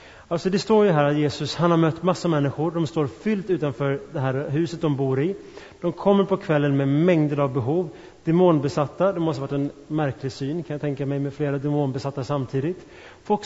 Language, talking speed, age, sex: Swedish, 210 wpm, 30-49, male